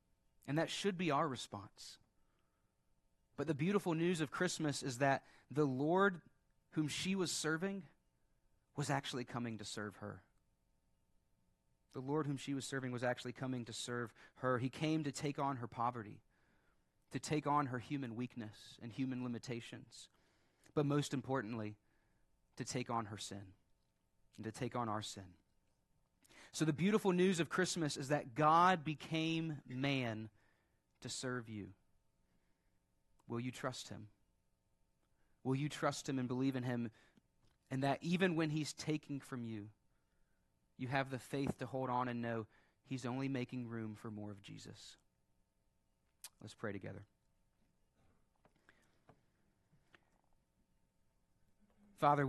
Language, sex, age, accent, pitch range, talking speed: English, male, 30-49, American, 110-150 Hz, 140 wpm